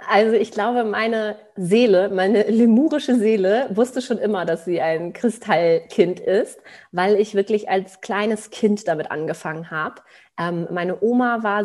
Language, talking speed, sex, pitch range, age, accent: German, 150 wpm, female, 170-210 Hz, 30-49, German